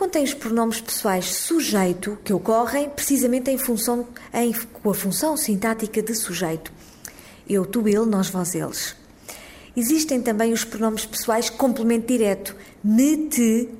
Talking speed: 140 wpm